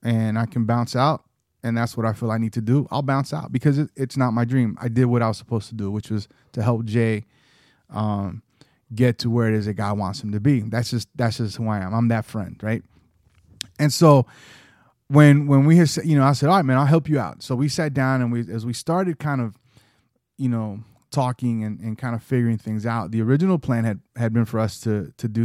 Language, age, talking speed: English, 30-49, 255 wpm